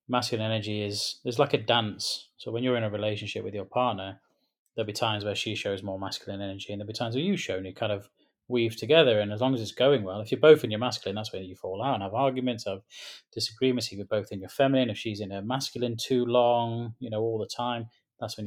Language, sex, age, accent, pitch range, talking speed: English, male, 20-39, British, 105-120 Hz, 265 wpm